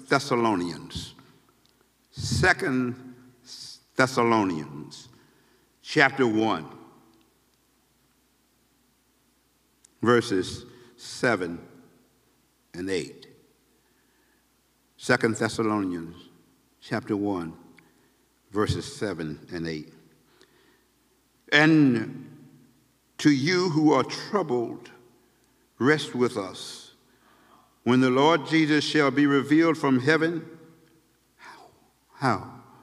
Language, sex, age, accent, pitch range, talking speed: English, male, 60-79, American, 105-145 Hz, 70 wpm